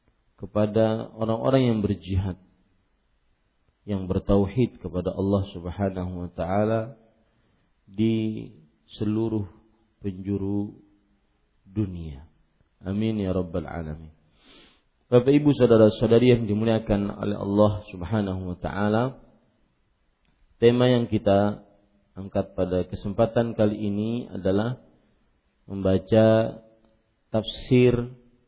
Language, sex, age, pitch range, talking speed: Malay, male, 40-59, 95-110 Hz, 85 wpm